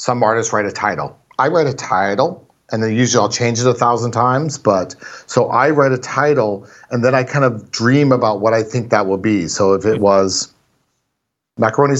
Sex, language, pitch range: male, English, 110-135 Hz